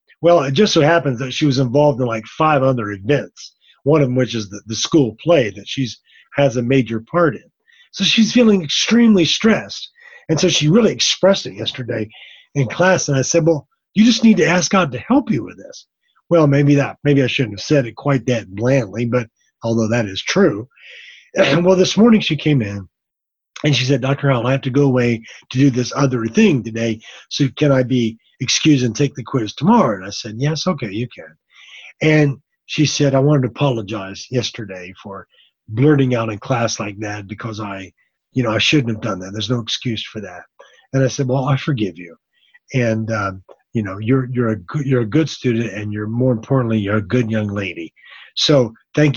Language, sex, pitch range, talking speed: English, male, 115-150 Hz, 215 wpm